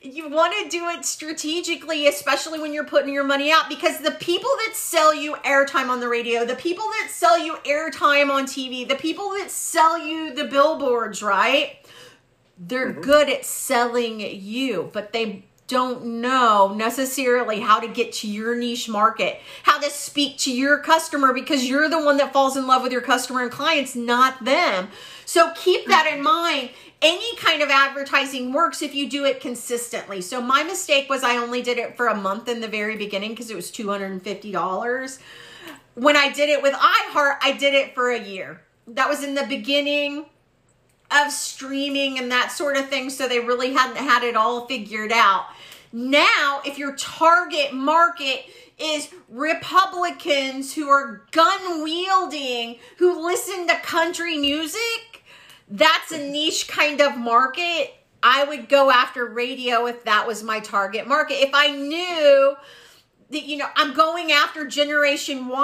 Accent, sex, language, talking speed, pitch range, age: American, female, English, 170 wpm, 245-310 Hz, 40-59